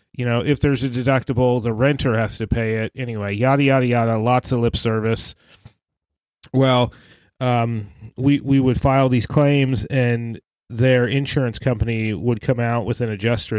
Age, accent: 30-49, American